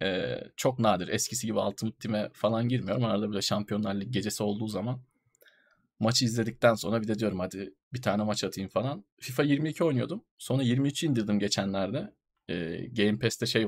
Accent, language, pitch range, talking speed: native, Turkish, 100-125 Hz, 165 wpm